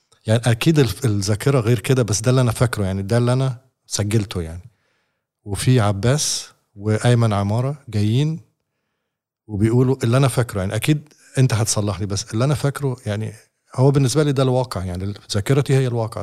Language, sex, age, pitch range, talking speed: Arabic, male, 50-69, 105-125 Hz, 165 wpm